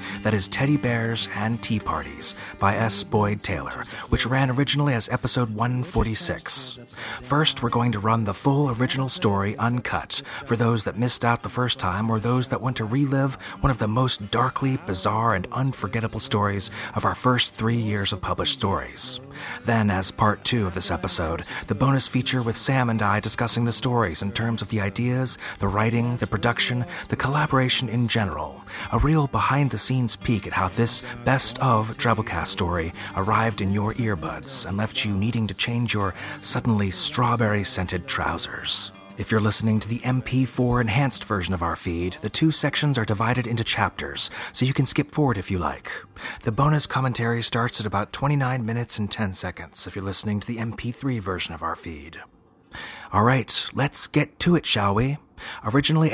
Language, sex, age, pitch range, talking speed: English, male, 30-49, 100-125 Hz, 180 wpm